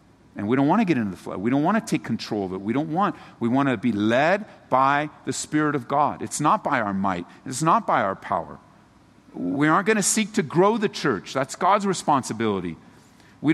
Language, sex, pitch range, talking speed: English, male, 145-205 Hz, 235 wpm